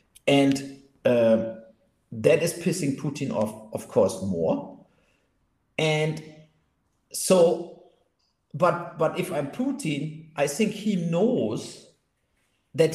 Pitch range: 130-170 Hz